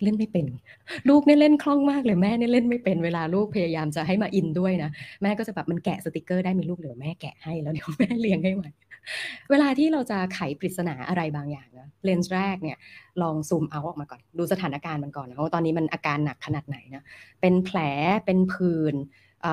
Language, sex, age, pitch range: Thai, female, 20-39, 150-190 Hz